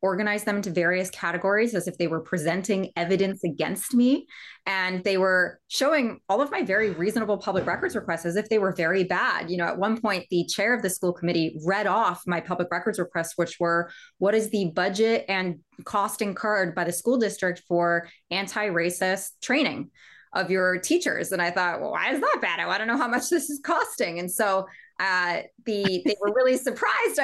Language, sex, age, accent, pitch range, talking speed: English, female, 20-39, American, 180-235 Hz, 200 wpm